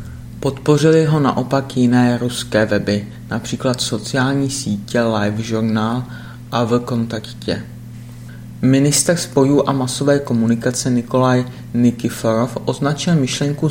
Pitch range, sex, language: 115-130 Hz, male, Czech